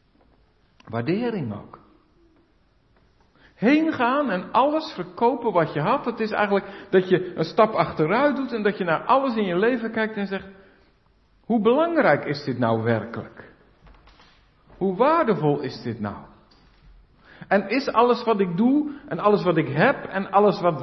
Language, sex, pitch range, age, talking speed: Dutch, male, 135-220 Hz, 50-69, 160 wpm